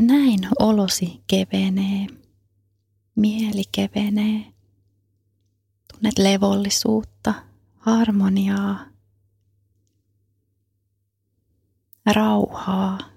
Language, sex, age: Finnish, female, 30-49